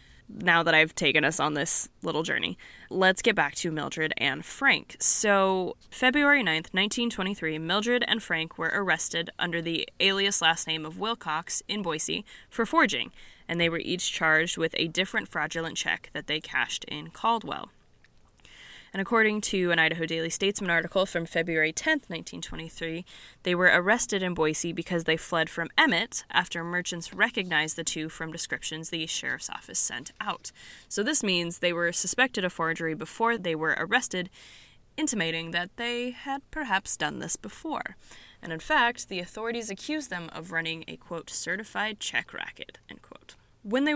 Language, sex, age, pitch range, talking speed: English, female, 10-29, 165-210 Hz, 170 wpm